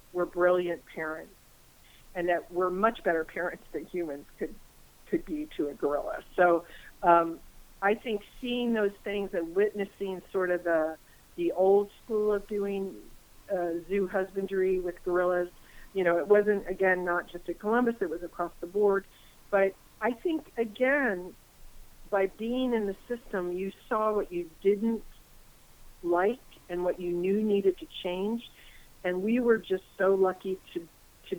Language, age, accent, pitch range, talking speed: English, 50-69, American, 175-205 Hz, 160 wpm